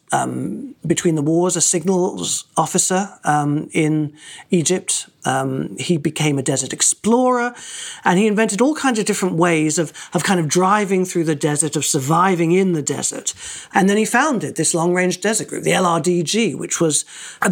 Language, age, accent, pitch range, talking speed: English, 40-59, British, 160-200 Hz, 170 wpm